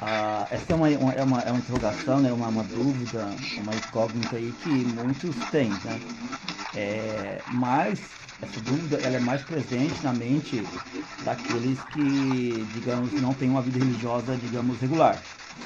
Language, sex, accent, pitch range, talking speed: Portuguese, male, Brazilian, 115-135 Hz, 160 wpm